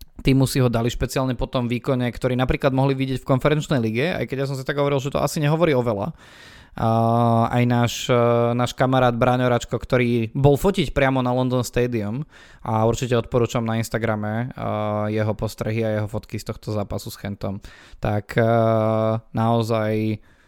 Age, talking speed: 20-39, 165 wpm